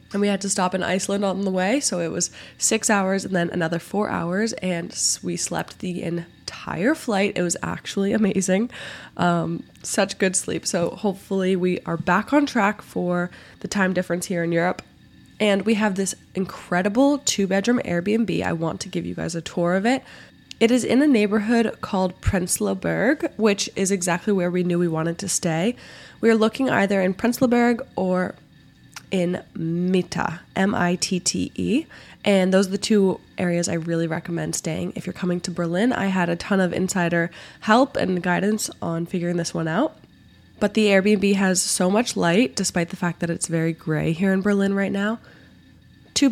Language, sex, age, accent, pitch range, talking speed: English, female, 20-39, American, 175-215 Hz, 185 wpm